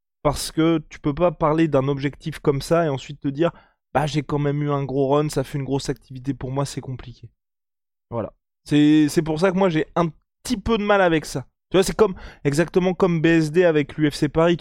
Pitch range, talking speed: 140-190 Hz, 235 wpm